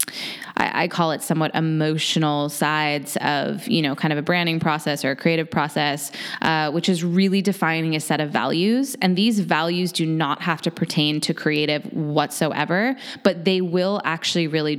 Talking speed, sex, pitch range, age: 180 wpm, female, 150-190 Hz, 20-39